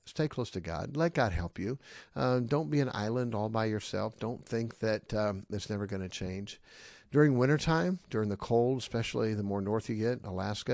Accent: American